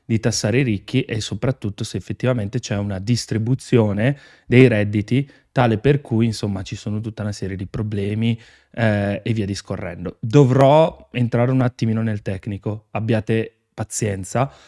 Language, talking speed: Italian, 145 wpm